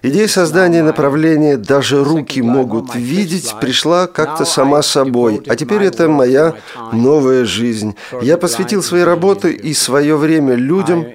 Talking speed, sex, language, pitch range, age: 135 wpm, male, Russian, 130-170 Hz, 40-59